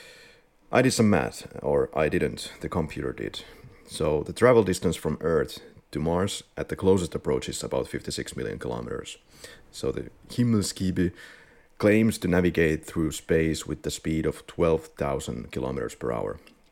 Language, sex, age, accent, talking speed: English, male, 30-49, Finnish, 155 wpm